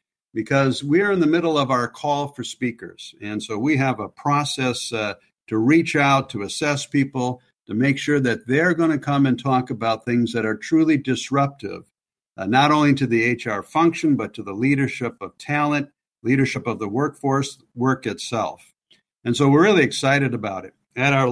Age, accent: 60-79, American